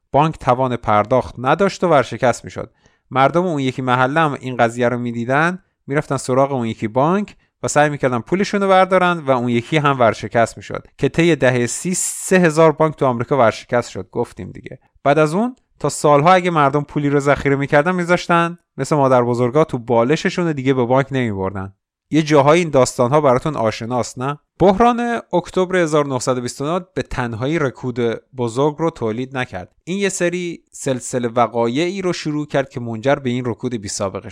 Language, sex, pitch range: Persian, male, 115-155 Hz